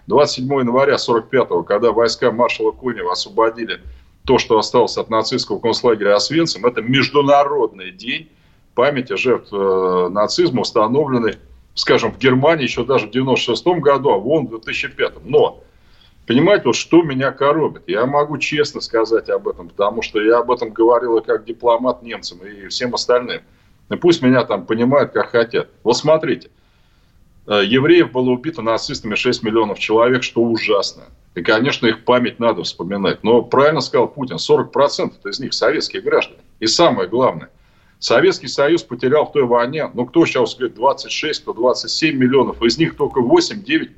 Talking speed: 150 wpm